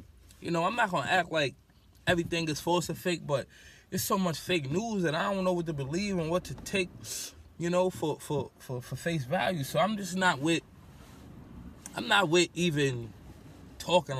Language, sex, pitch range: English, male, 120-170 Hz